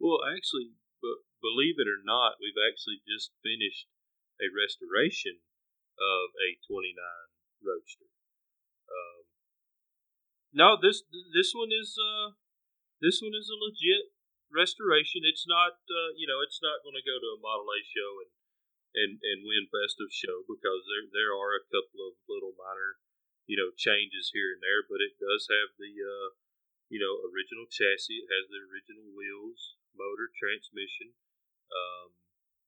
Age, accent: 30-49, American